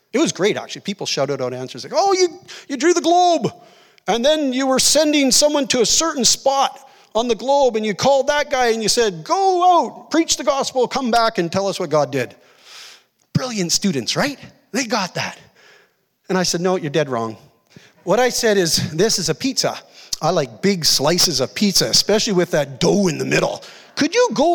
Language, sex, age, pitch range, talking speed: English, male, 40-59, 135-220 Hz, 210 wpm